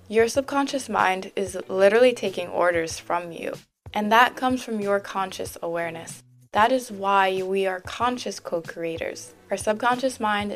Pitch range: 180-215 Hz